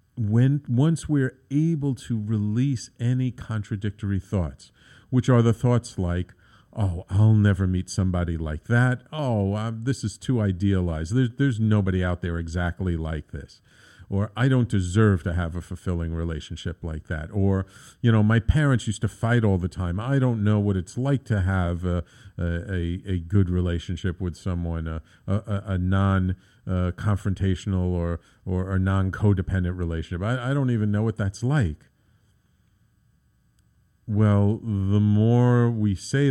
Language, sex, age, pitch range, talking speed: English, male, 50-69, 90-120 Hz, 160 wpm